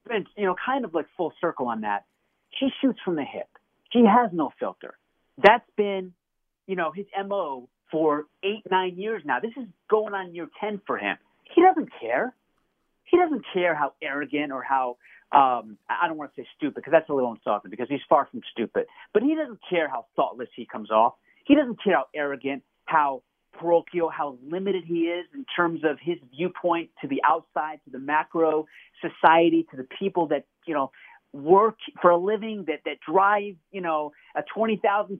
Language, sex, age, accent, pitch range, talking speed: English, male, 40-59, American, 155-220 Hz, 195 wpm